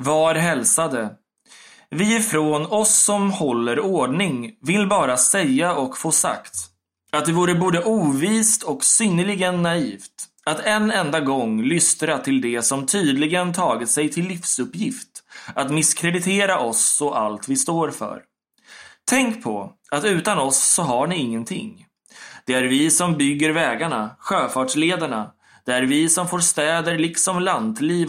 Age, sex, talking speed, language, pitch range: 20-39, male, 145 wpm, Swedish, 135-180 Hz